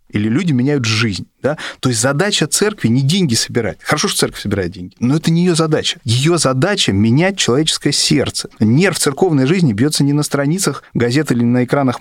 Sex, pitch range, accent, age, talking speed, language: male, 110-145 Hz, native, 20-39, 190 wpm, Russian